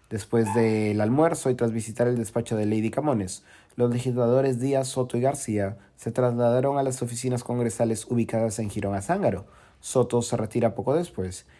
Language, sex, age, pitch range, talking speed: Spanish, male, 30-49, 105-125 Hz, 170 wpm